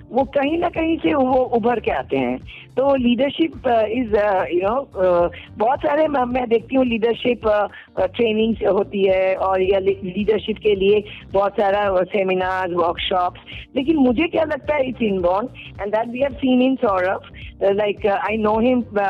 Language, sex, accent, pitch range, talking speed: Hindi, female, native, 190-250 Hz, 165 wpm